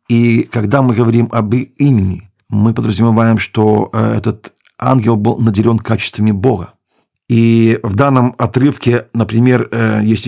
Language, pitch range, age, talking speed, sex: Ukrainian, 105-120 Hz, 50-69, 125 wpm, male